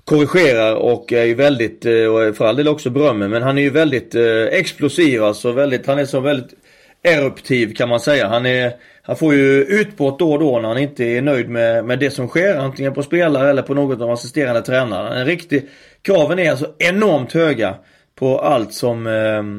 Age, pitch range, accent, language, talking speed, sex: 30-49, 120-150 Hz, native, Swedish, 200 wpm, male